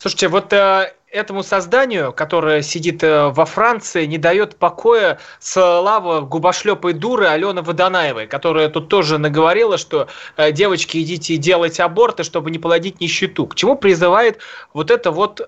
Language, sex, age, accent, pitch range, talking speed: Russian, male, 20-39, native, 170-220 Hz, 145 wpm